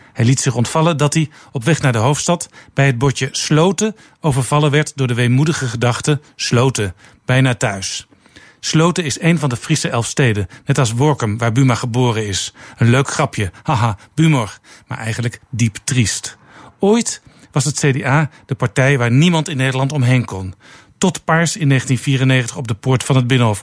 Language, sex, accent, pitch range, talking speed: Dutch, male, Dutch, 125-150 Hz, 180 wpm